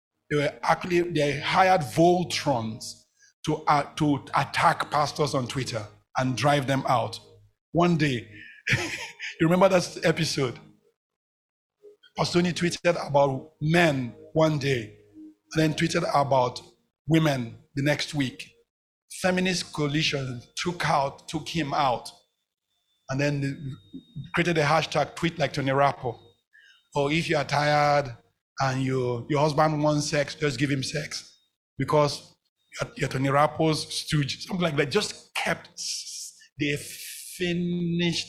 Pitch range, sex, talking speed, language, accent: 130-165 Hz, male, 125 wpm, English, Nigerian